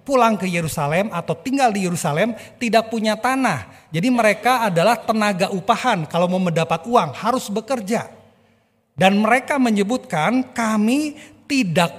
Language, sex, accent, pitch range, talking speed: English, male, Indonesian, 165-245 Hz, 130 wpm